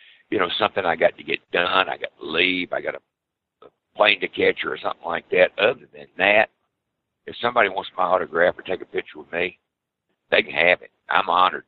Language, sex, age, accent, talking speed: English, male, 60-79, American, 220 wpm